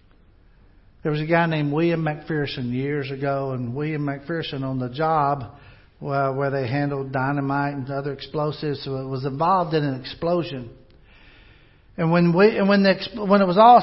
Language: English